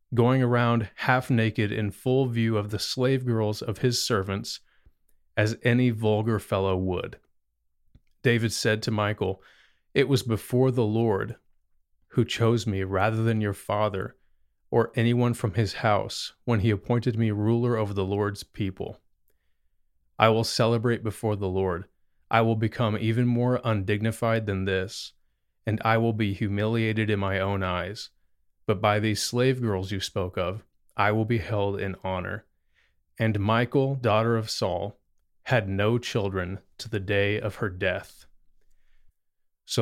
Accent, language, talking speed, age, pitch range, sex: American, English, 150 wpm, 30-49, 95-115 Hz, male